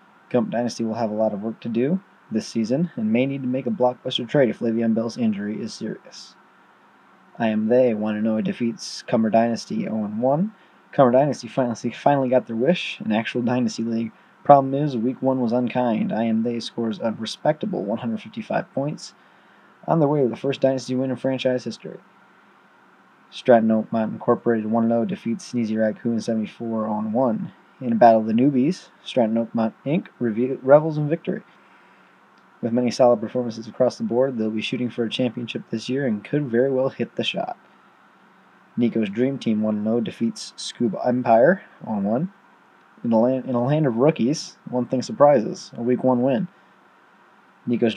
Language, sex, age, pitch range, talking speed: English, male, 20-39, 115-135 Hz, 170 wpm